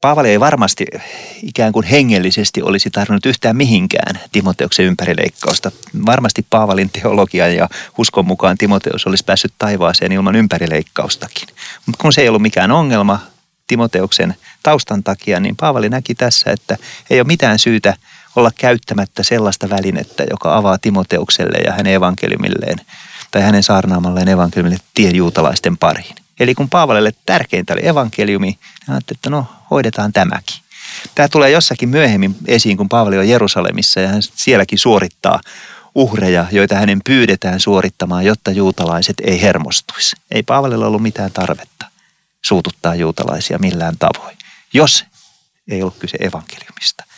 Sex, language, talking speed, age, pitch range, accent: male, Finnish, 135 wpm, 30-49, 95-120 Hz, native